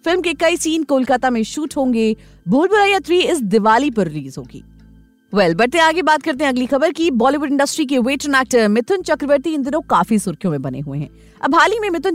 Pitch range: 215-325 Hz